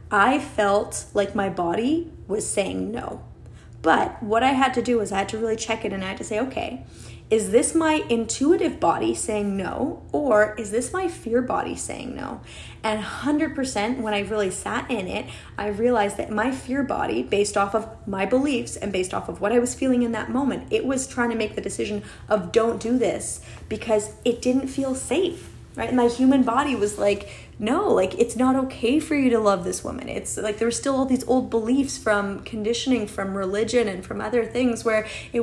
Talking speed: 210 wpm